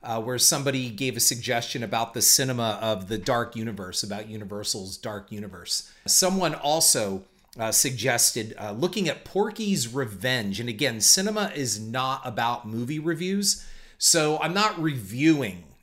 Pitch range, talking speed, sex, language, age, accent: 110-155 Hz, 145 wpm, male, English, 40-59, American